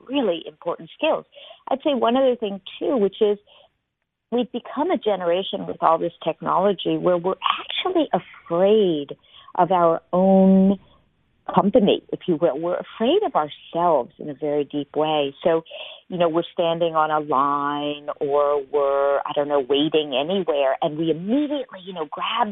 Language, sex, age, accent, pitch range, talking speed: English, female, 50-69, American, 155-230 Hz, 160 wpm